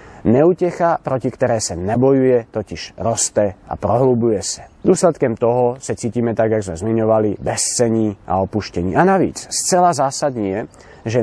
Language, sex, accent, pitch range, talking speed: Czech, male, native, 105-140 Hz, 145 wpm